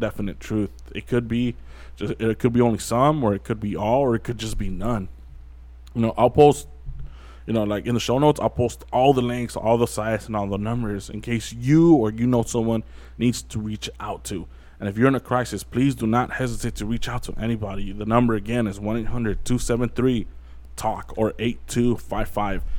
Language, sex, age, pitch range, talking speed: English, male, 20-39, 95-120 Hz, 210 wpm